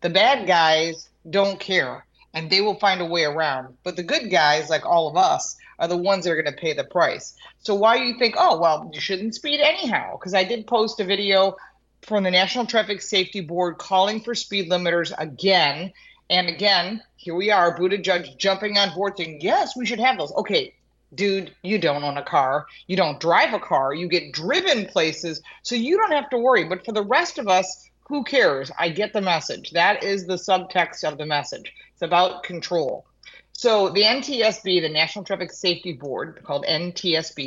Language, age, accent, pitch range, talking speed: English, 30-49, American, 165-215 Hz, 205 wpm